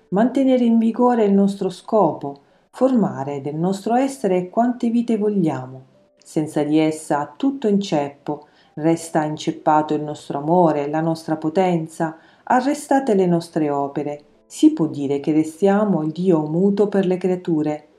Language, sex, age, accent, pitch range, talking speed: Italian, female, 40-59, native, 155-195 Hz, 140 wpm